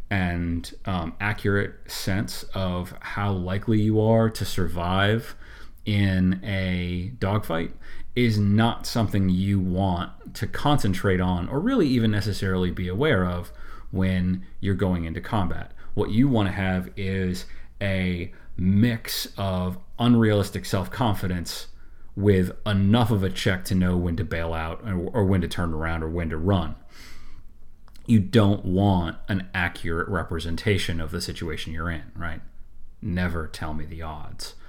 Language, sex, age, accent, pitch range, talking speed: English, male, 30-49, American, 85-105 Hz, 145 wpm